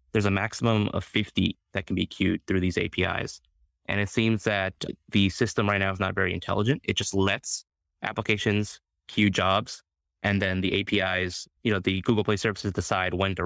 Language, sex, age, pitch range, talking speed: English, male, 20-39, 95-105 Hz, 190 wpm